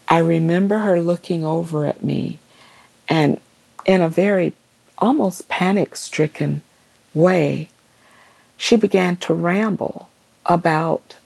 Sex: female